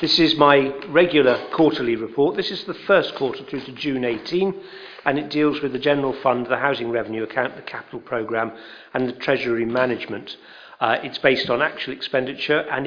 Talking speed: 185 wpm